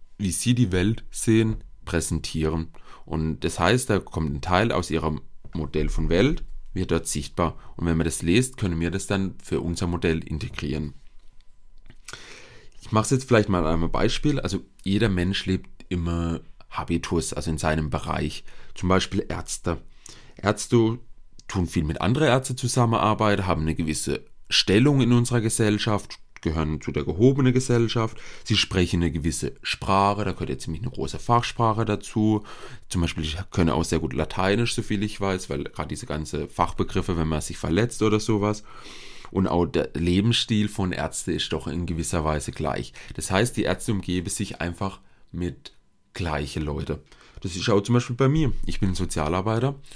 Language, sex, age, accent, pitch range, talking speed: German, male, 30-49, German, 80-110 Hz, 170 wpm